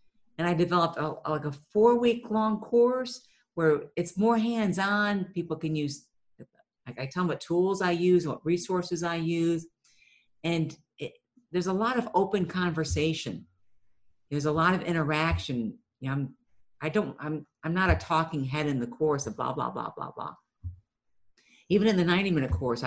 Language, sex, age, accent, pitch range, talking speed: English, female, 50-69, American, 130-180 Hz, 175 wpm